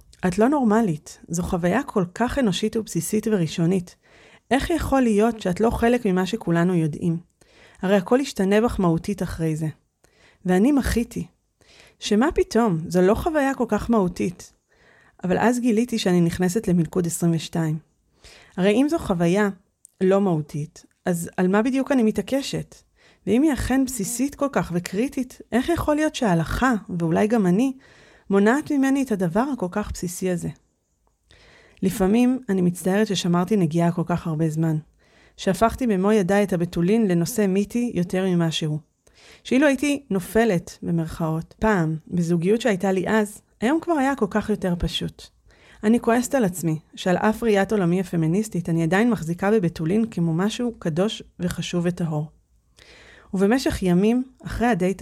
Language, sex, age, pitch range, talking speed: Hebrew, female, 30-49, 175-230 Hz, 145 wpm